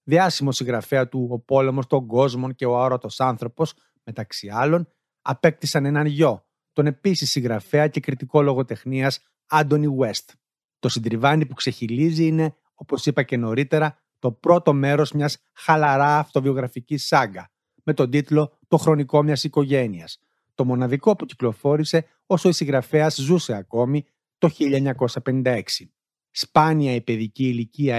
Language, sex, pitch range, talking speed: Greek, male, 125-150 Hz, 135 wpm